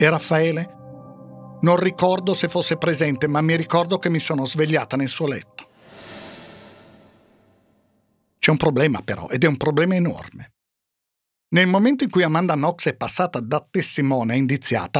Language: Italian